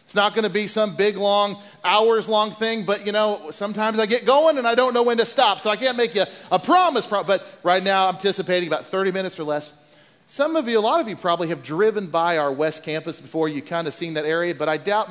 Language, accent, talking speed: English, American, 260 wpm